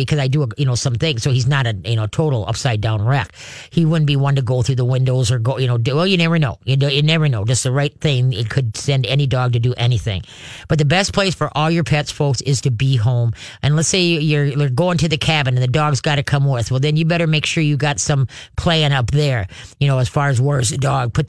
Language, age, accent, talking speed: English, 40-59, American, 275 wpm